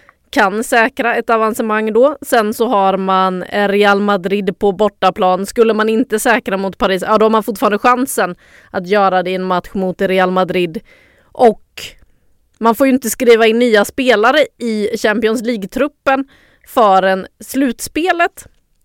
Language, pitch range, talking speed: English, 195-245 Hz, 155 wpm